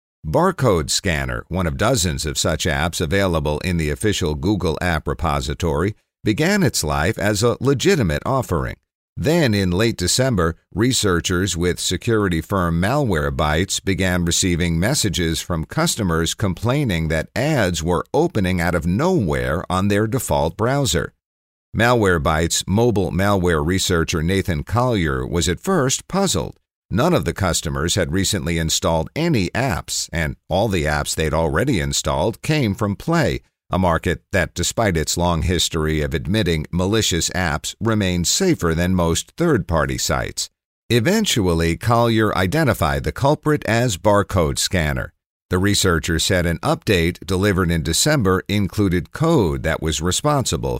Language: English